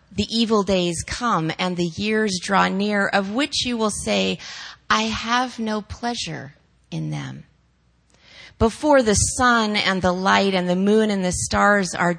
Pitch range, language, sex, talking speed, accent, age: 165-220 Hz, English, female, 160 wpm, American, 30-49